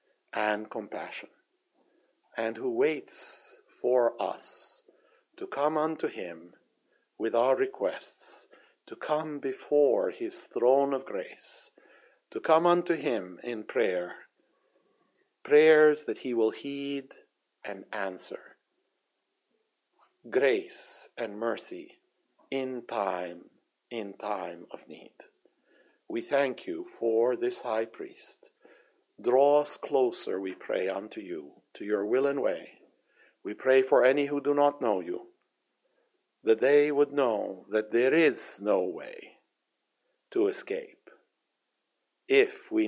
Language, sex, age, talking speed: English, male, 60-79, 120 wpm